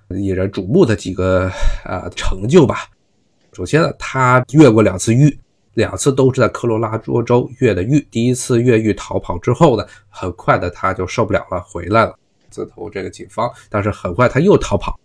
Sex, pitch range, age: male, 95-125 Hz, 20-39